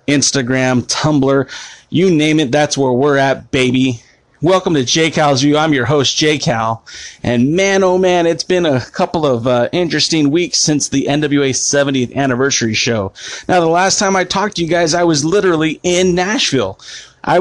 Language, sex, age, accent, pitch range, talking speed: English, male, 30-49, American, 130-175 Hz, 175 wpm